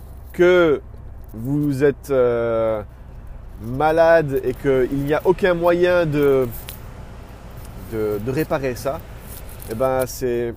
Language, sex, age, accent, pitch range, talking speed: French, male, 30-49, French, 110-155 Hz, 115 wpm